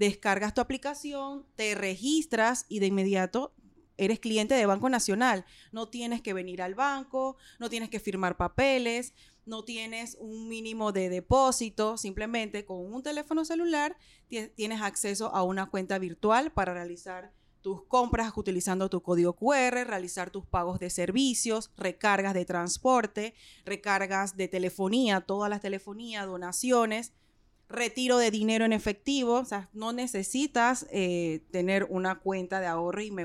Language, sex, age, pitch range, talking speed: Spanish, female, 30-49, 195-240 Hz, 145 wpm